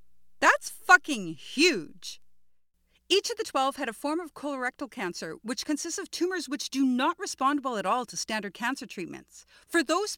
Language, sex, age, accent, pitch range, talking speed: English, female, 40-59, American, 225-330 Hz, 175 wpm